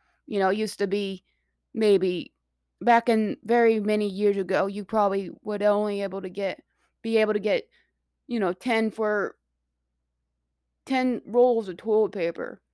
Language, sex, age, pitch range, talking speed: English, female, 20-39, 185-215 Hz, 155 wpm